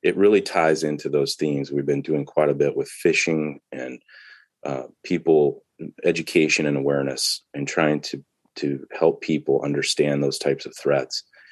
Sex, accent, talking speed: male, American, 160 wpm